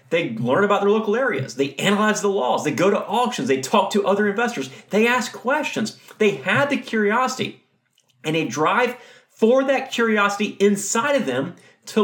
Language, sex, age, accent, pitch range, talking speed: English, male, 30-49, American, 165-245 Hz, 180 wpm